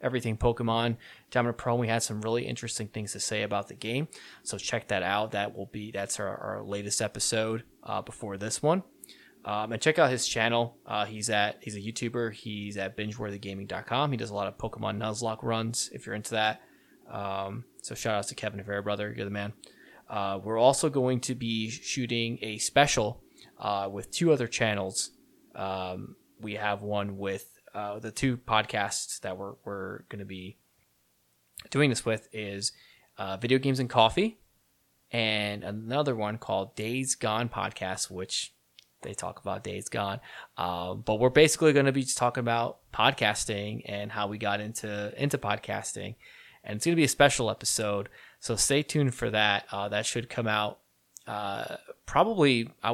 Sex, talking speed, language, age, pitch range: male, 180 wpm, English, 20-39, 100-120 Hz